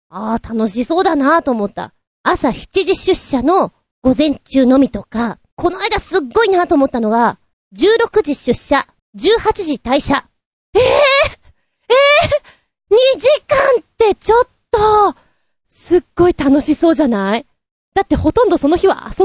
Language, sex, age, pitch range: Japanese, female, 20-39, 235-360 Hz